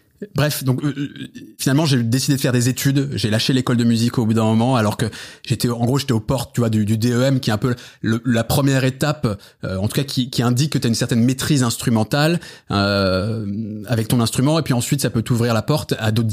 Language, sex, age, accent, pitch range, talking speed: French, male, 20-39, French, 105-130 Hz, 250 wpm